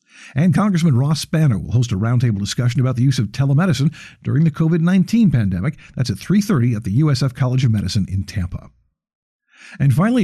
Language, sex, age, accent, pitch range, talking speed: English, male, 50-69, American, 120-155 Hz, 180 wpm